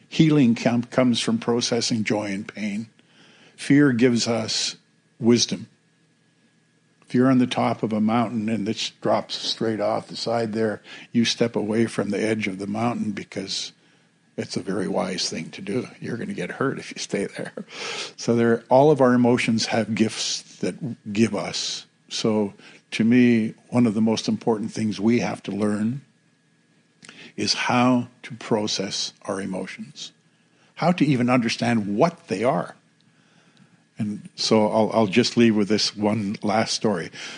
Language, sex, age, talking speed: English, male, 50-69, 160 wpm